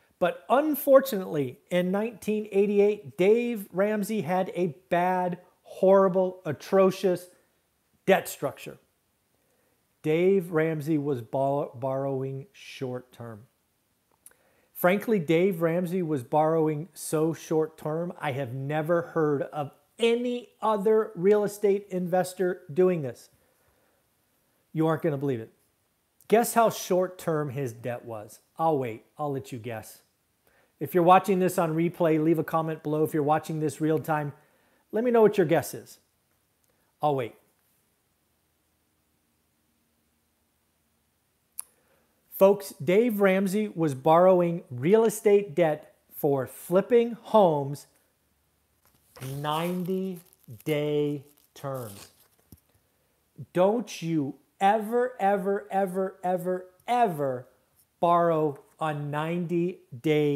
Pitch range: 135-190 Hz